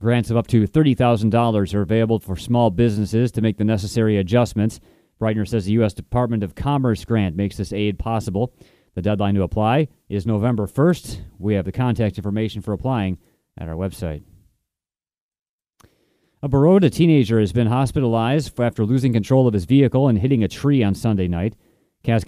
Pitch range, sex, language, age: 105-130 Hz, male, English, 30-49